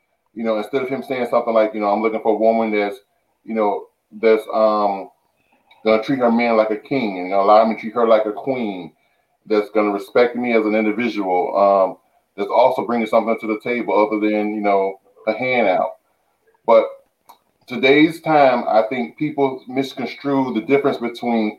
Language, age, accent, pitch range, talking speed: English, 30-49, American, 110-135 Hz, 190 wpm